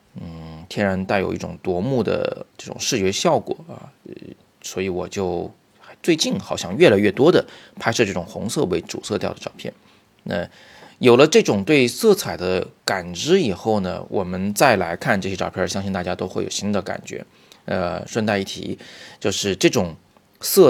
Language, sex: Chinese, male